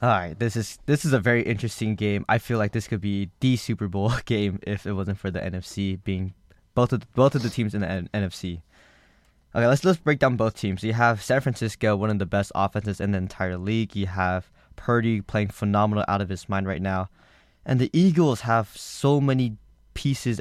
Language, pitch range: English, 95-120 Hz